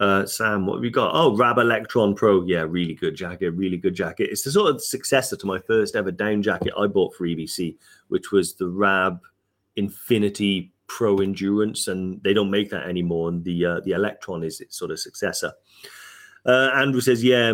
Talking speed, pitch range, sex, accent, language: 200 wpm, 95-110 Hz, male, British, English